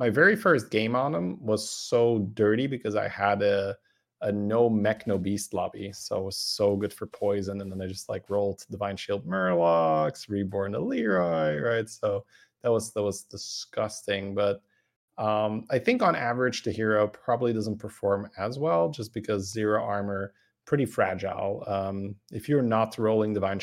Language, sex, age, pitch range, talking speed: English, male, 20-39, 100-115 Hz, 180 wpm